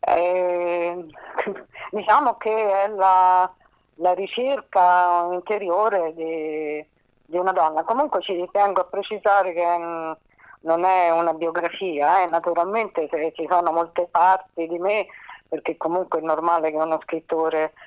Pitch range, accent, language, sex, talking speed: 160-190 Hz, native, Italian, female, 130 wpm